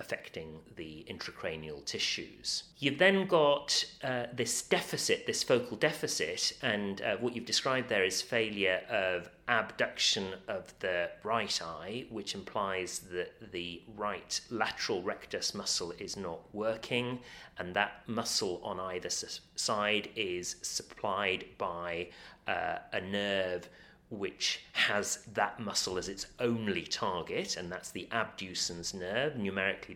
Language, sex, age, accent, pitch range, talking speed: English, male, 30-49, British, 95-135 Hz, 130 wpm